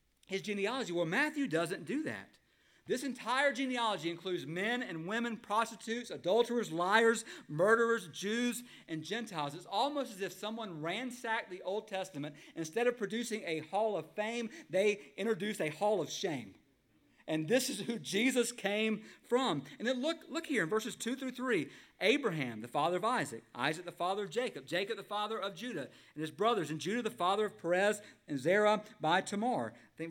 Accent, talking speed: American, 175 wpm